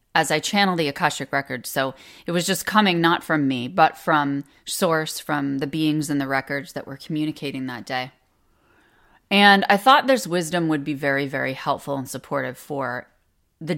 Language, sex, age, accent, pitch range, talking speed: English, female, 30-49, American, 140-195 Hz, 185 wpm